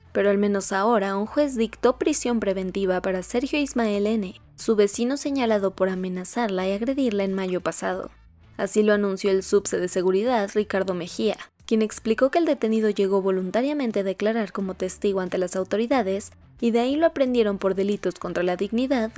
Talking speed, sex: 175 wpm, female